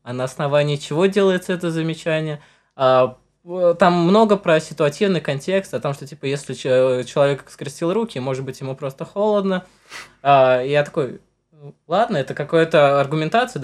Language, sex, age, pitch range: Russian, male, 20-39, 130-170 Hz